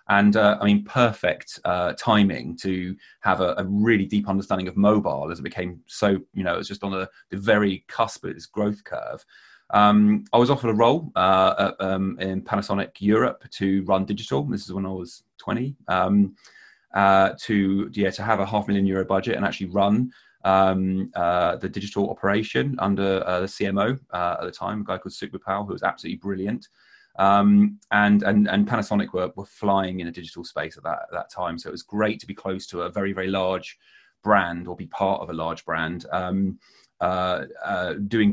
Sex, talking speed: male, 205 wpm